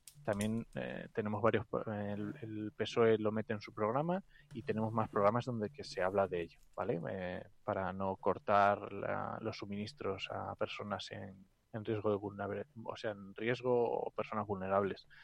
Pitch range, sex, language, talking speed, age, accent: 110-130 Hz, male, Spanish, 170 wpm, 20-39, Spanish